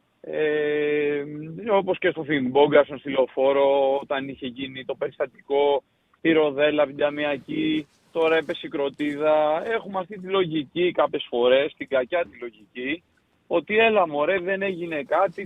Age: 30-49